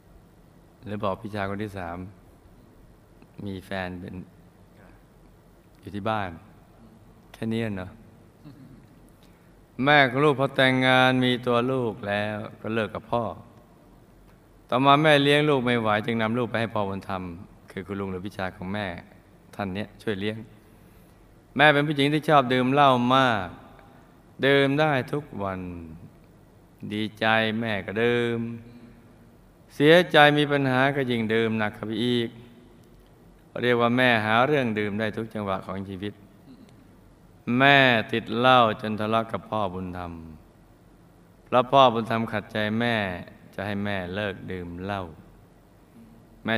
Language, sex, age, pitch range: Thai, male, 20-39, 100-125 Hz